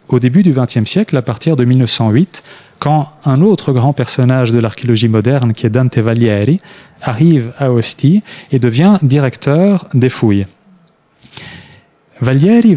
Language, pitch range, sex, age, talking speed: French, 120-165 Hz, male, 30-49, 140 wpm